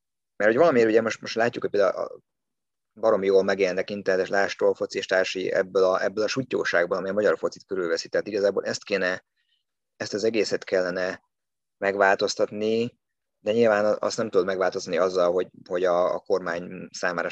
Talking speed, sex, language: 160 wpm, male, Hungarian